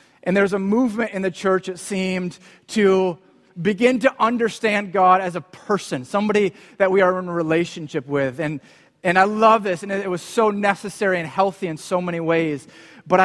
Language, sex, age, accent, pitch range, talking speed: English, male, 30-49, American, 130-185 Hz, 190 wpm